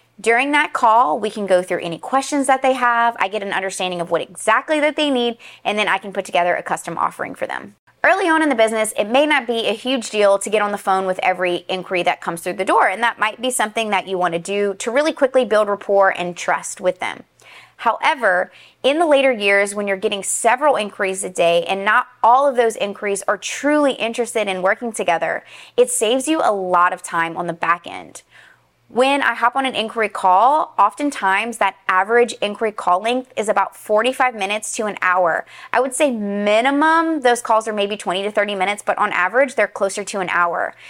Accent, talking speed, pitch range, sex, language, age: American, 220 wpm, 190-255 Hz, female, English, 20-39